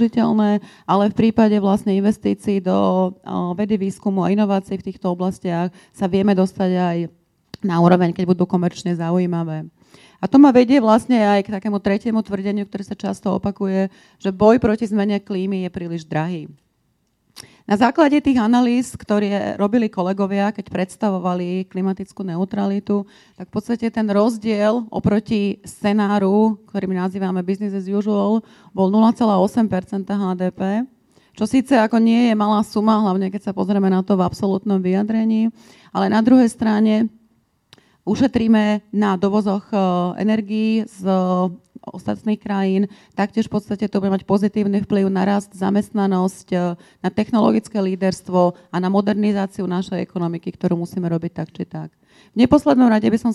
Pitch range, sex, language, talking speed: 185-215 Hz, female, Slovak, 145 wpm